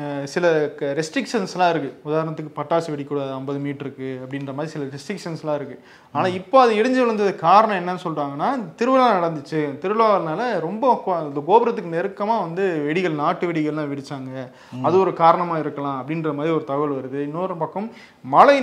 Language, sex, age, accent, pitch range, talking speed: Tamil, male, 30-49, native, 140-180 Hz, 95 wpm